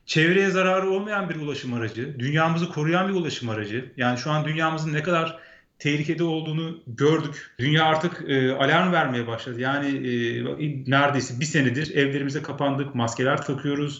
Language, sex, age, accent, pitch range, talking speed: Turkish, male, 40-59, native, 130-170 Hz, 155 wpm